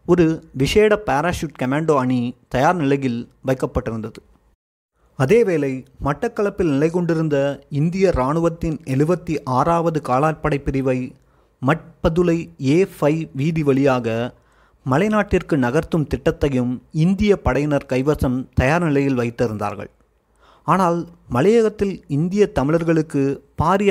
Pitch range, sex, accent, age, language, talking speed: 130-170 Hz, male, native, 30-49, Tamil, 95 wpm